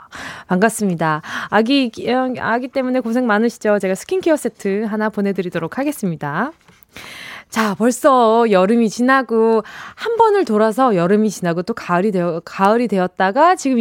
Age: 20-39